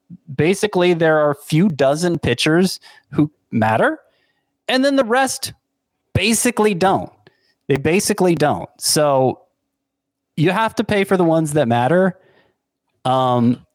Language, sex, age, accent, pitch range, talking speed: English, male, 30-49, American, 120-180 Hz, 125 wpm